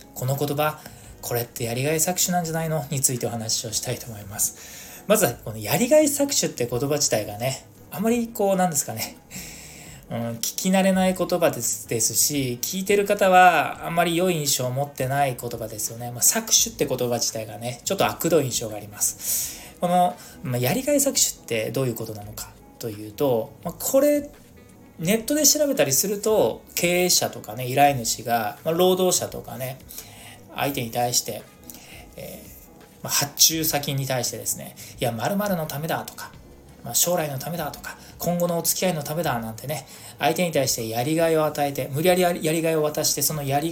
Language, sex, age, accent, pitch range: Japanese, male, 20-39, native, 120-180 Hz